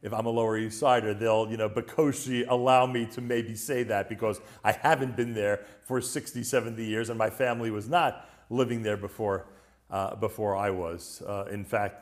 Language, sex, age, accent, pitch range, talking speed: English, male, 40-59, American, 100-120 Hz, 200 wpm